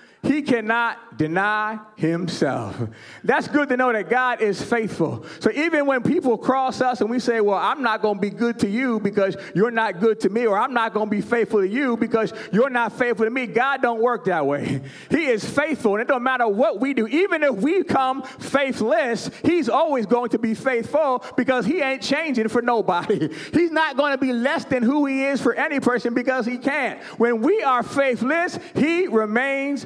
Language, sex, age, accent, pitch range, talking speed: English, male, 30-49, American, 220-275 Hz, 210 wpm